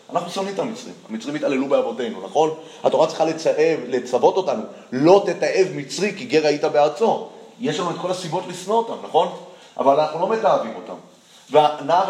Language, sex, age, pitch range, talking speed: Hebrew, male, 30-49, 155-205 Hz, 170 wpm